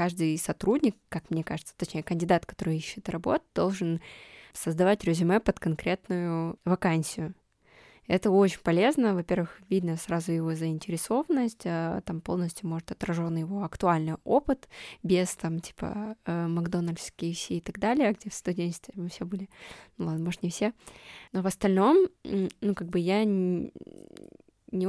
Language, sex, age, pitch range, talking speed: Russian, female, 20-39, 175-205 Hz, 135 wpm